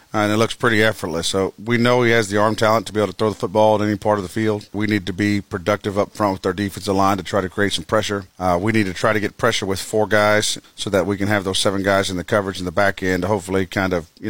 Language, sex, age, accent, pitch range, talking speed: English, male, 40-59, American, 100-110 Hz, 315 wpm